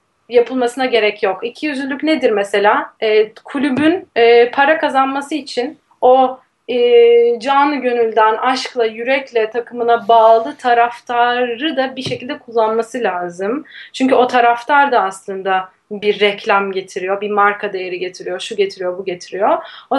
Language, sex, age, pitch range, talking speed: Turkish, female, 30-49, 225-270 Hz, 130 wpm